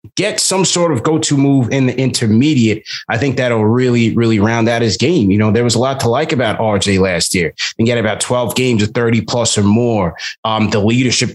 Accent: American